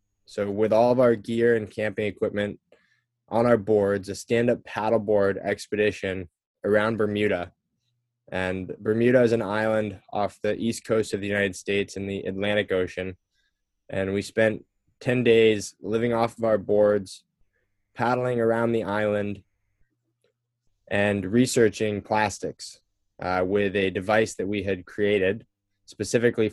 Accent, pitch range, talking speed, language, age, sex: American, 100-115 Hz, 140 wpm, English, 10-29, male